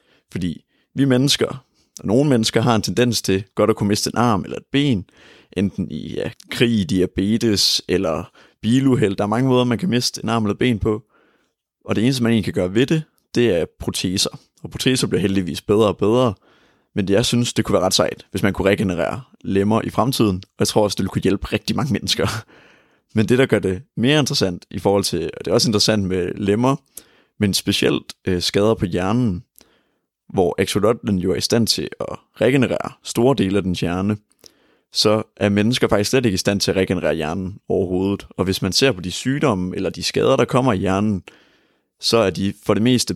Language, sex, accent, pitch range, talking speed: Danish, male, native, 95-120 Hz, 210 wpm